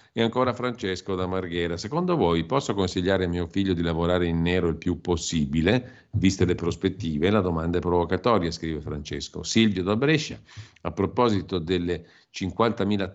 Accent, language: native, Italian